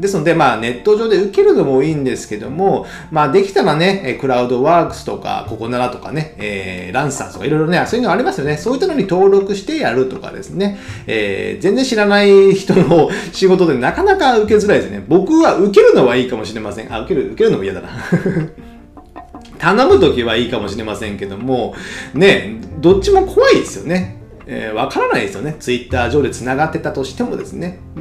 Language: Japanese